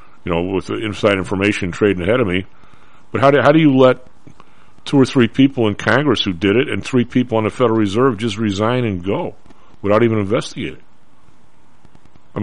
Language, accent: English, American